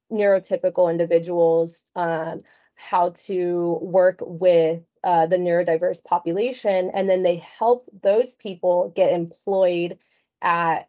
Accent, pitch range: American, 175-195 Hz